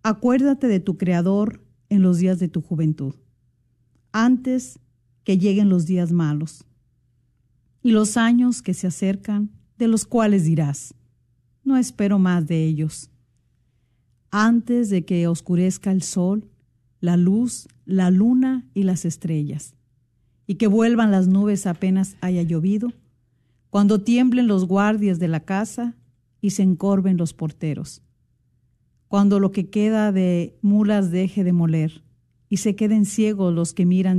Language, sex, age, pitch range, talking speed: Spanish, female, 50-69, 145-205 Hz, 140 wpm